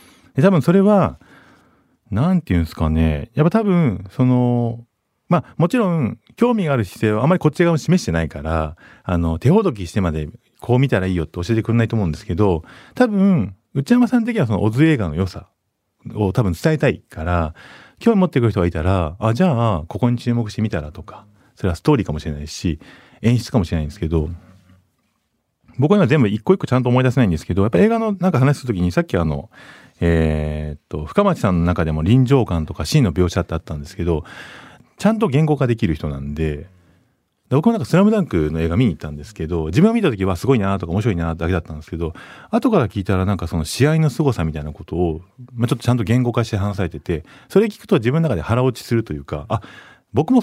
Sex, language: male, Japanese